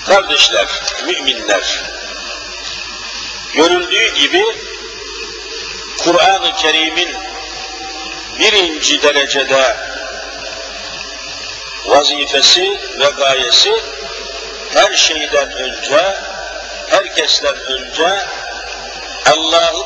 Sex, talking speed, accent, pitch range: male, 50 wpm, native, 150-200 Hz